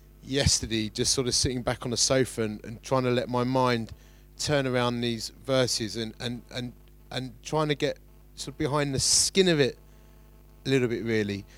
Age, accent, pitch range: 30-49, British, 115-135 Hz